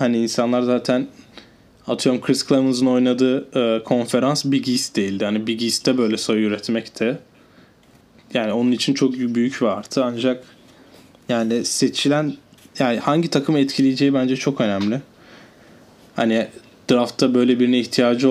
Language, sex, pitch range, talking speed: Turkish, male, 115-130 Hz, 130 wpm